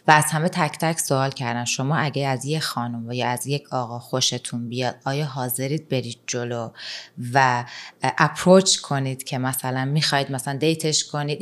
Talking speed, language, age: 165 wpm, Persian, 30-49